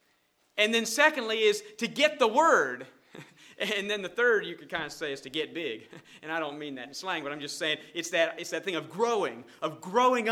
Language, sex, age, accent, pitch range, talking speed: English, male, 40-59, American, 150-215 Hz, 240 wpm